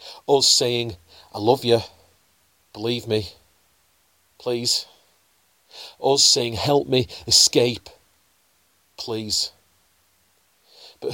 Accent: British